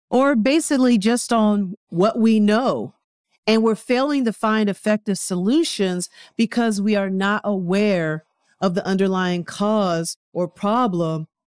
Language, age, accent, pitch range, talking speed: English, 40-59, American, 180-225 Hz, 130 wpm